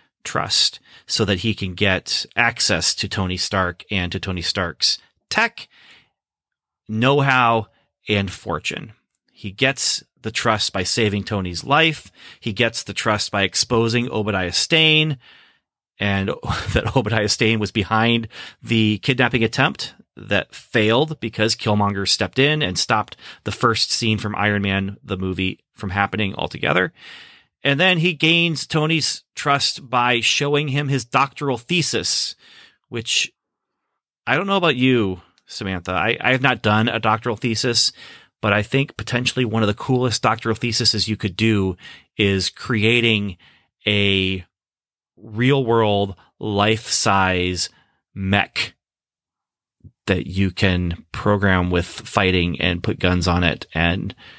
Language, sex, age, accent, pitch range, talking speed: English, male, 30-49, American, 95-120 Hz, 130 wpm